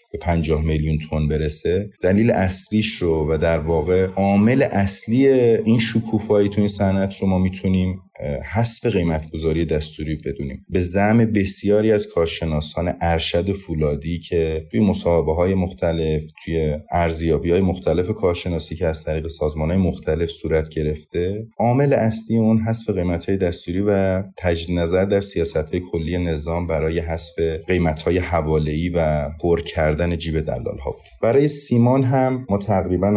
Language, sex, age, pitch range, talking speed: Persian, male, 30-49, 80-95 Hz, 145 wpm